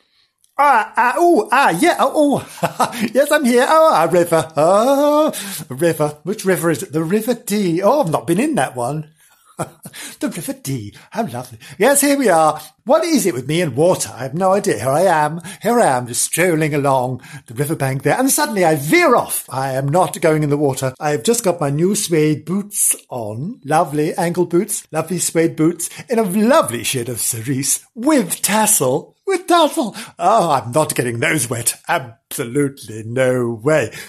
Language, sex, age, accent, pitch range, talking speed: English, male, 50-69, British, 140-235 Hz, 190 wpm